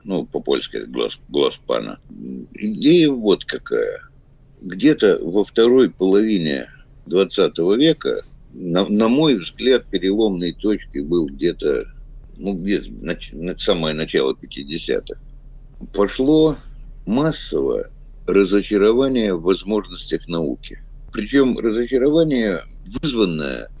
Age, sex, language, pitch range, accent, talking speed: 60-79, male, Russian, 95-150 Hz, native, 95 wpm